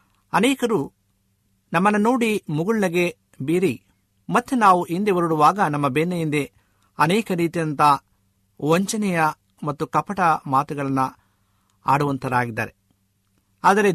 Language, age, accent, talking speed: Kannada, 50-69, native, 80 wpm